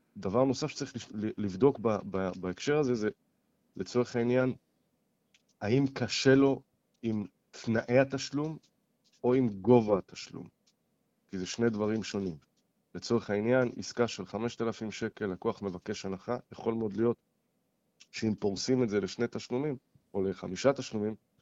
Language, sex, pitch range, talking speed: Hebrew, male, 100-125 Hz, 125 wpm